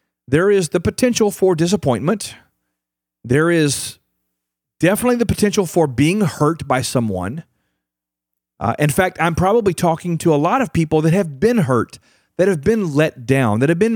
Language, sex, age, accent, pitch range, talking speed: English, male, 40-59, American, 110-170 Hz, 170 wpm